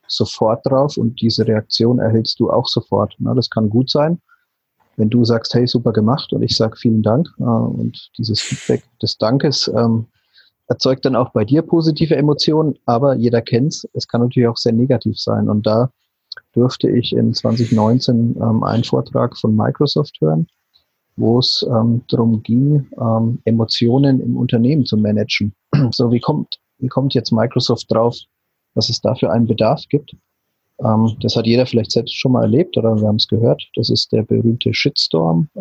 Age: 30-49